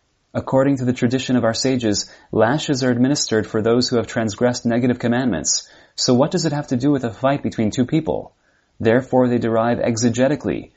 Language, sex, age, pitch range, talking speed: English, male, 30-49, 110-130 Hz, 190 wpm